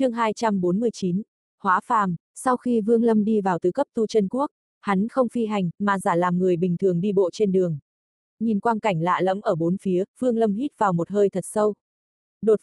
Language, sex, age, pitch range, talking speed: Vietnamese, female, 20-39, 180-225 Hz, 220 wpm